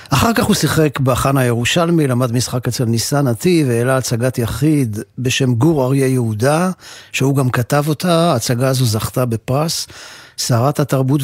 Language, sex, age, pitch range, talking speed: Hebrew, male, 50-69, 120-155 Hz, 150 wpm